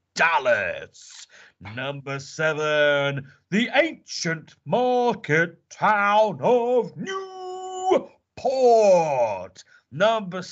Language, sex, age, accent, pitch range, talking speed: English, male, 40-59, British, 165-245 Hz, 55 wpm